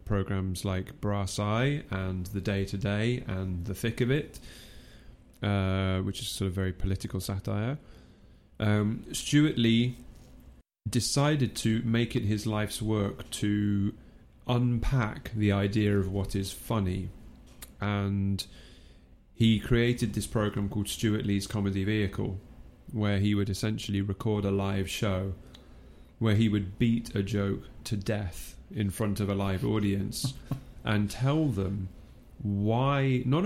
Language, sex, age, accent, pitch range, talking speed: English, male, 30-49, British, 100-120 Hz, 135 wpm